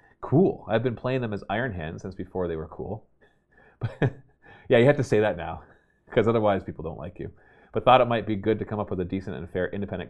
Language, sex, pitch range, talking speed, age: English, male, 85-110 Hz, 245 wpm, 30-49